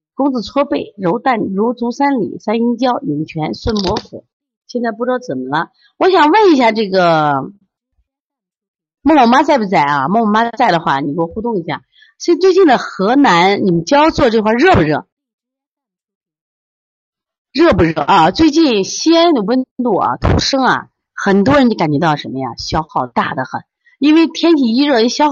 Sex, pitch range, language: female, 175-290 Hz, Chinese